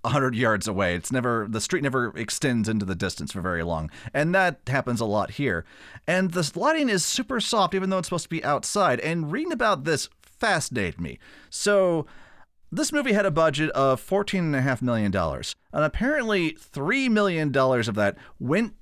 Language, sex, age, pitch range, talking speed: English, male, 40-59, 125-185 Hz, 185 wpm